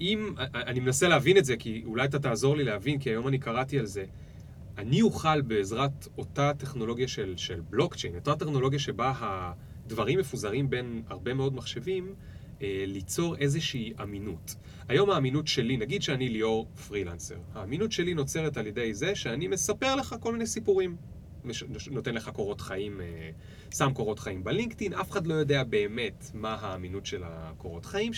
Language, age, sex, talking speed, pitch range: Hebrew, 30-49, male, 160 wpm, 100-150 Hz